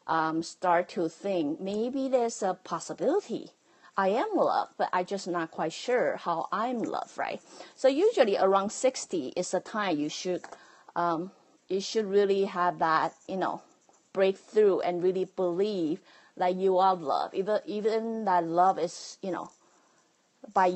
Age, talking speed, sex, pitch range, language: 30-49, 155 wpm, female, 175-210 Hz, English